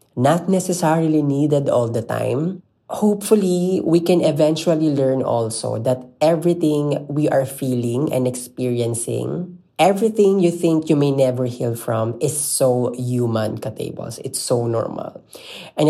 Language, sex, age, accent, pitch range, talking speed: Filipino, female, 20-39, native, 125-150 Hz, 130 wpm